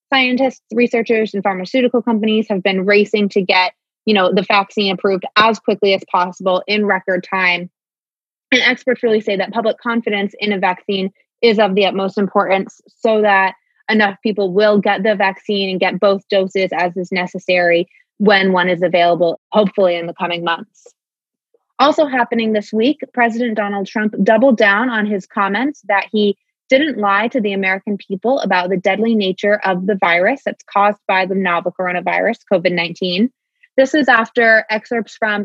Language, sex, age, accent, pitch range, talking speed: English, female, 20-39, American, 195-225 Hz, 170 wpm